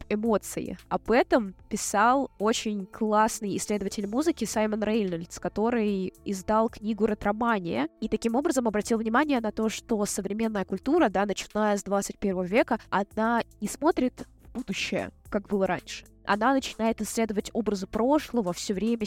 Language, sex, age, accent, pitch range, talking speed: Russian, female, 20-39, native, 200-245 Hz, 140 wpm